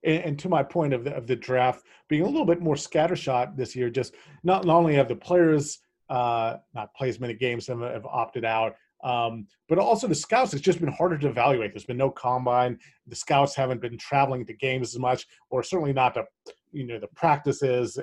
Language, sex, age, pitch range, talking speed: English, male, 40-59, 125-155 Hz, 220 wpm